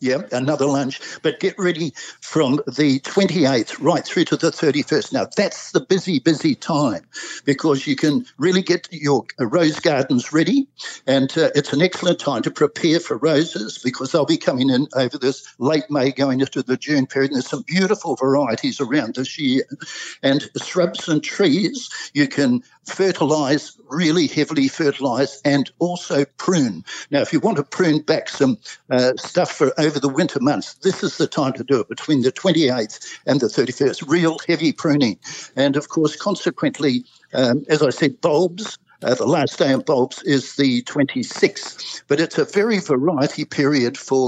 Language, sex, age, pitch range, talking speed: English, male, 60-79, 135-175 Hz, 175 wpm